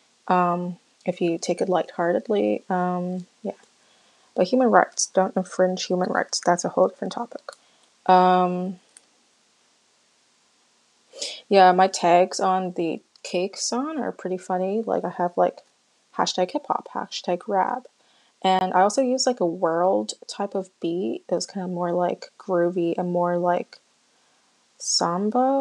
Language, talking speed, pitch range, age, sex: English, 140 wpm, 175-195 Hz, 20-39, female